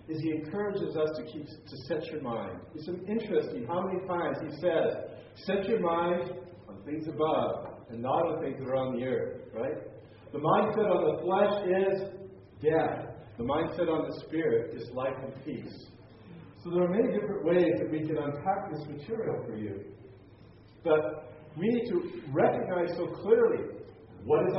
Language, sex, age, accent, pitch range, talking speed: English, male, 40-59, American, 145-195 Hz, 180 wpm